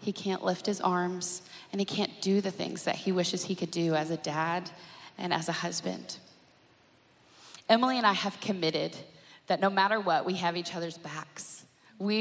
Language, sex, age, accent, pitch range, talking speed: English, female, 20-39, American, 175-230 Hz, 190 wpm